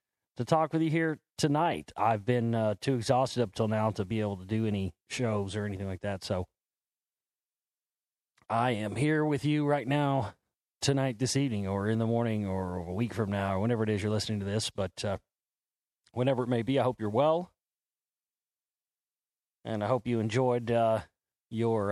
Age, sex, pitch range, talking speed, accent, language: 30-49, male, 110-140 Hz, 190 wpm, American, English